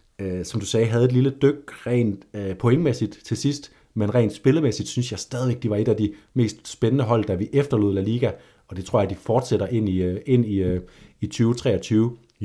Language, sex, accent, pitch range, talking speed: Danish, male, native, 95-115 Hz, 205 wpm